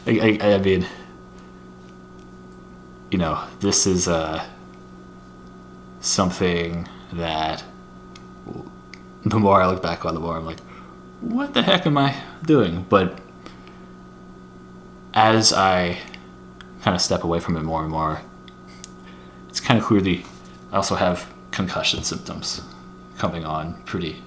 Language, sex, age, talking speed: English, male, 20-39, 125 wpm